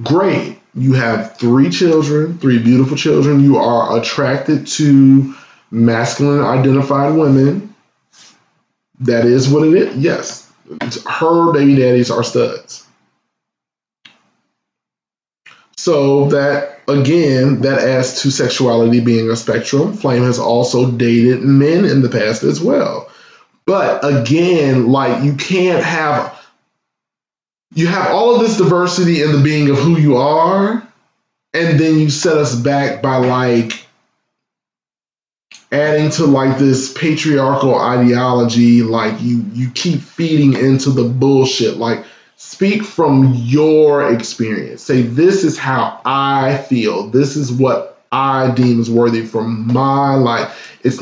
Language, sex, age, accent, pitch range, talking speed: English, male, 20-39, American, 125-150 Hz, 125 wpm